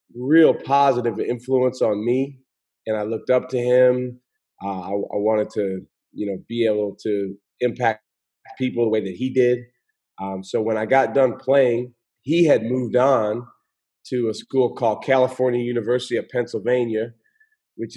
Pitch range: 115-135 Hz